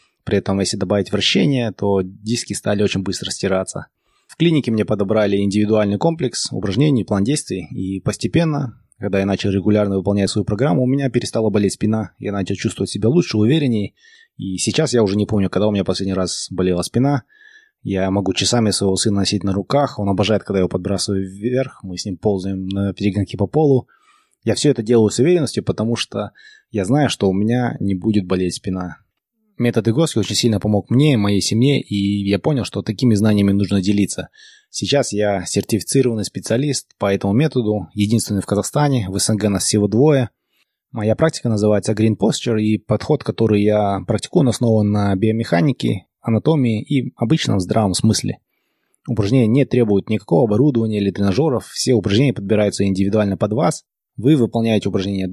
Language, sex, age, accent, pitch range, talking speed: Russian, male, 20-39, native, 100-120 Hz, 170 wpm